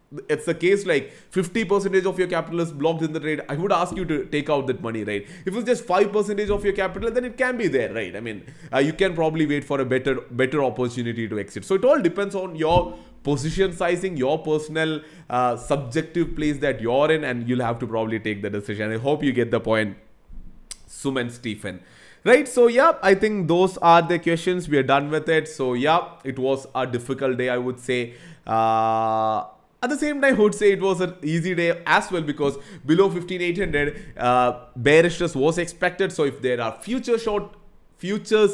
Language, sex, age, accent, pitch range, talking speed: English, male, 20-39, Indian, 125-185 Hz, 210 wpm